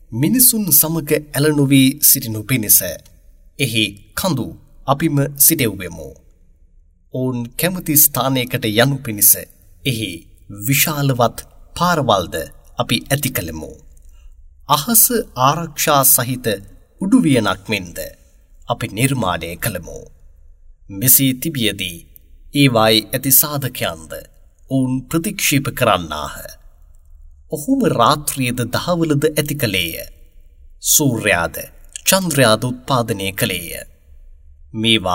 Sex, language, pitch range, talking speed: male, English, 85-140 Hz, 70 wpm